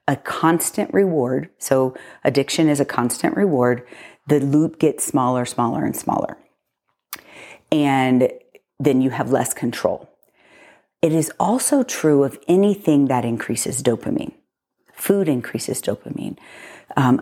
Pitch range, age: 135-185 Hz, 40-59